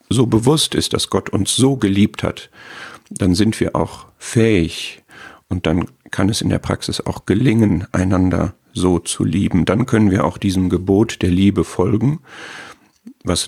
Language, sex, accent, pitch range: German, male, German, 90-105 Hz